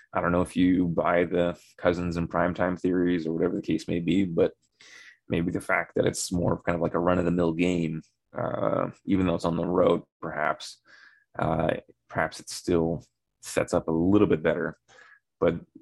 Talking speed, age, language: 200 wpm, 30-49, English